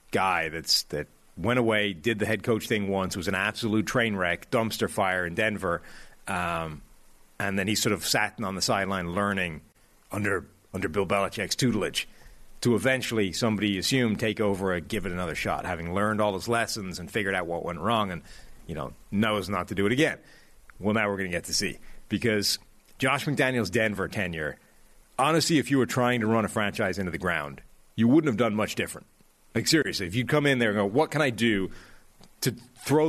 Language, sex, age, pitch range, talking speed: English, male, 30-49, 100-130 Hz, 205 wpm